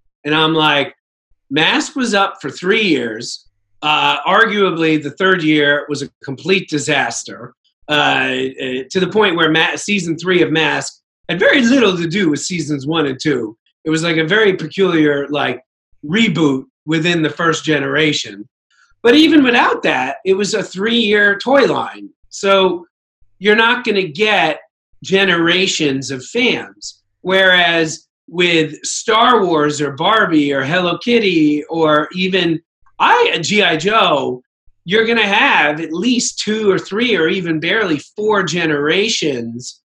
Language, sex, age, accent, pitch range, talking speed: English, male, 40-59, American, 150-205 Hz, 145 wpm